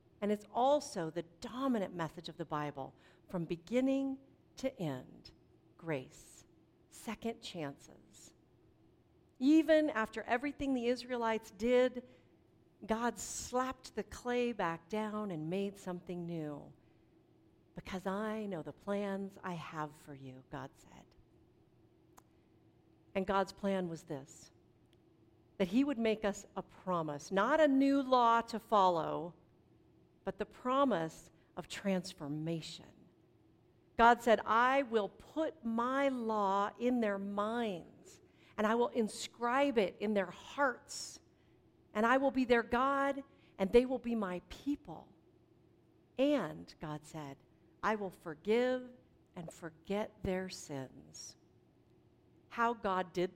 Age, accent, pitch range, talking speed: 50-69, American, 170-240 Hz, 125 wpm